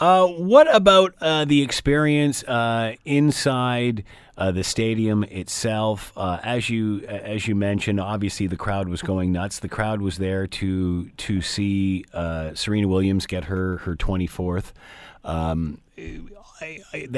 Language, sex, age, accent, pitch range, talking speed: English, male, 40-59, American, 90-115 Hz, 135 wpm